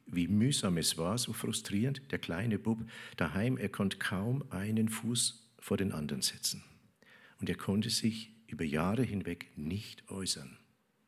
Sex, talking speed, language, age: male, 150 wpm, German, 50-69